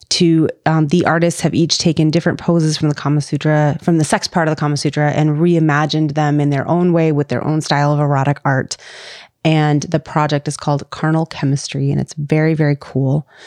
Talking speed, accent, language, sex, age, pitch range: 210 wpm, American, English, female, 30-49, 145-170 Hz